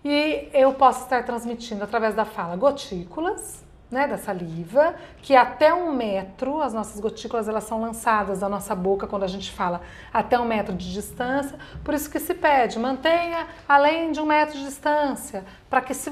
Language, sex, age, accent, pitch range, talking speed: Portuguese, female, 40-59, Brazilian, 215-290 Hz, 180 wpm